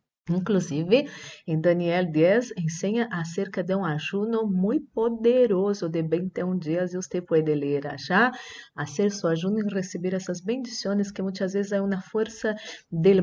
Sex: female